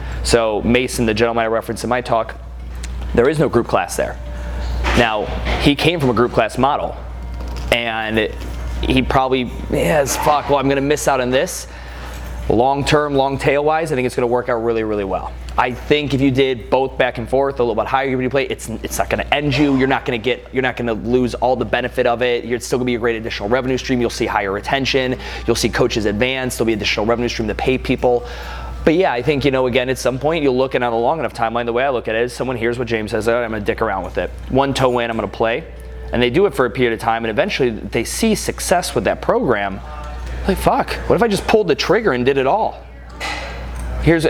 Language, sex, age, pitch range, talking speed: English, male, 20-39, 105-130 Hz, 245 wpm